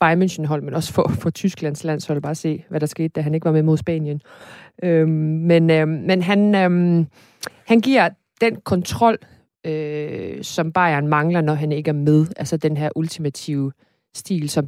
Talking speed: 180 wpm